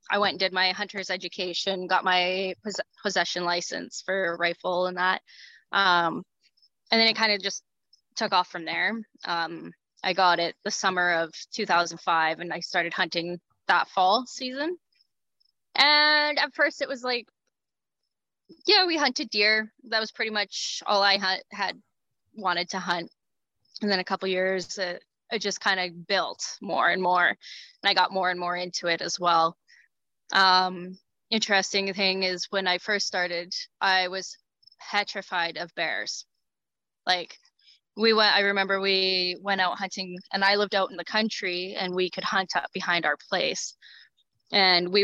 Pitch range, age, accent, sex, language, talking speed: 180-210 Hz, 10-29, American, female, English, 170 wpm